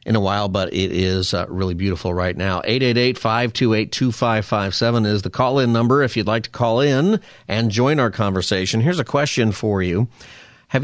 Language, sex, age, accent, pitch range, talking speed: English, male, 40-59, American, 100-130 Hz, 240 wpm